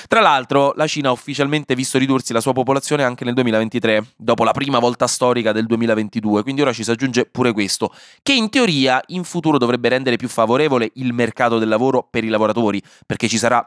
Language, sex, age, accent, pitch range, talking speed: Italian, male, 20-39, native, 105-140 Hz, 205 wpm